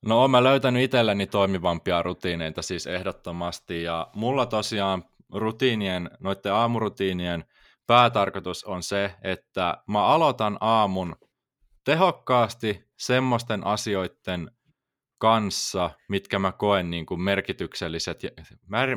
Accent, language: native, Finnish